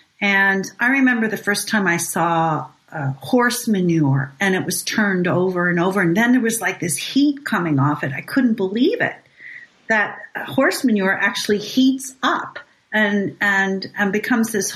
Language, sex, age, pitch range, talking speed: English, female, 50-69, 195-265 Hz, 175 wpm